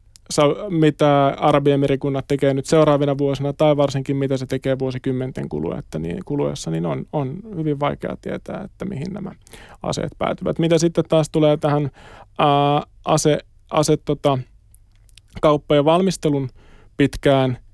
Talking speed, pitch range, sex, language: 120 wpm, 125-145 Hz, male, Finnish